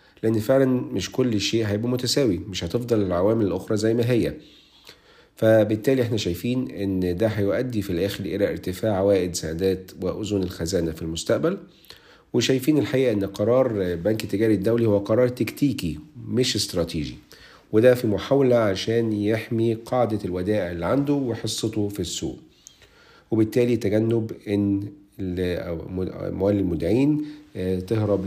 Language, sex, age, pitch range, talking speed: Arabic, male, 50-69, 95-115 Hz, 125 wpm